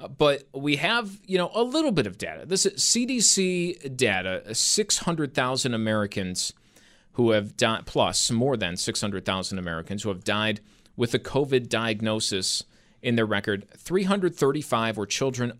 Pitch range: 110-150 Hz